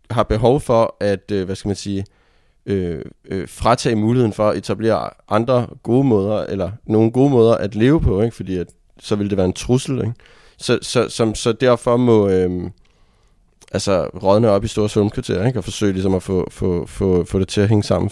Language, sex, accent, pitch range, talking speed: Danish, male, native, 100-120 Hz, 210 wpm